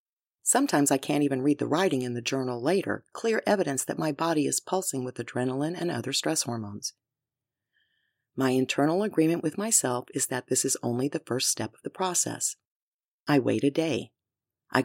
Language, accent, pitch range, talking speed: English, American, 125-165 Hz, 180 wpm